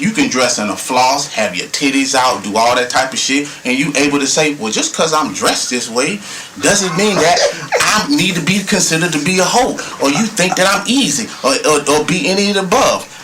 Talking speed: 245 wpm